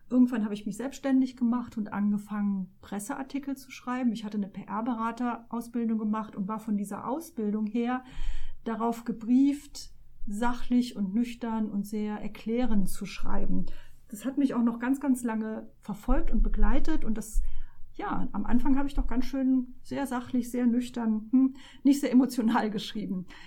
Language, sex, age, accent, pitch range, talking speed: German, female, 40-59, German, 220-260 Hz, 155 wpm